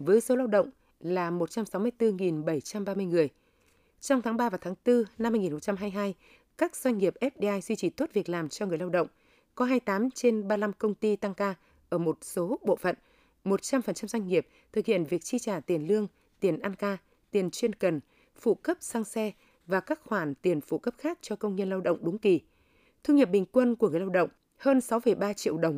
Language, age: Vietnamese, 20-39